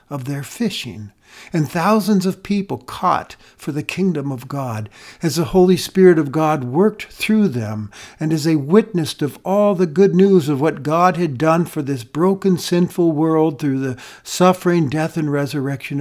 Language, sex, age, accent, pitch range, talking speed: English, male, 60-79, American, 140-195 Hz, 175 wpm